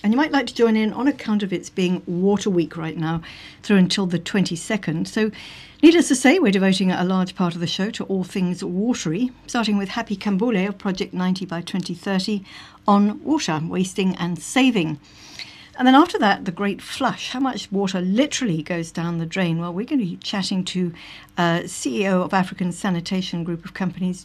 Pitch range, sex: 175-215 Hz, female